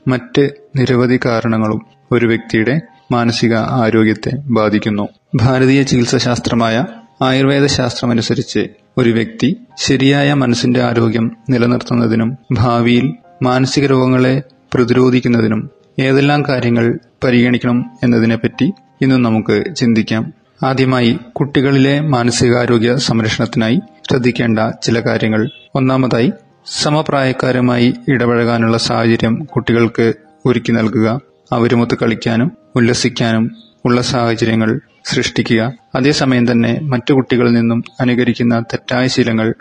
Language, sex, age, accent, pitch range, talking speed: Malayalam, male, 30-49, native, 115-130 Hz, 85 wpm